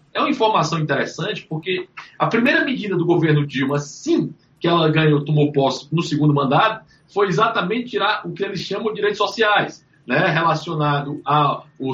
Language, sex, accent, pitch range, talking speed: Portuguese, male, Brazilian, 140-175 Hz, 165 wpm